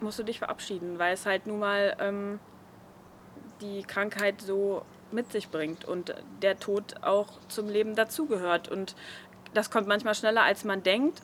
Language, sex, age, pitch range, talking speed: German, female, 20-39, 195-225 Hz, 165 wpm